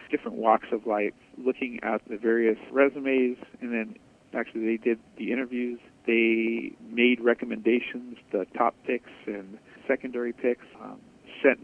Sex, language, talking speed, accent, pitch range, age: male, English, 140 wpm, American, 115-130 Hz, 50-69